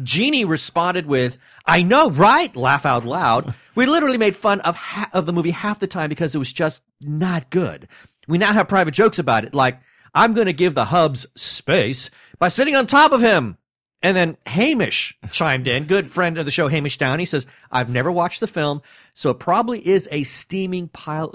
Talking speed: 205 wpm